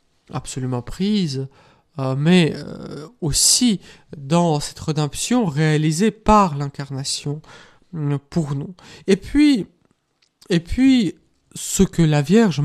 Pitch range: 140-190 Hz